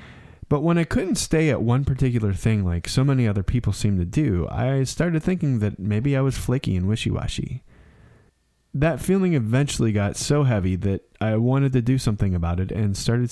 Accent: American